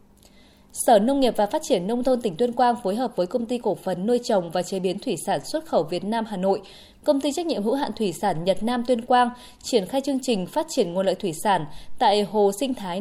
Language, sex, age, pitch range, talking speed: Vietnamese, female, 20-39, 200-255 Hz, 265 wpm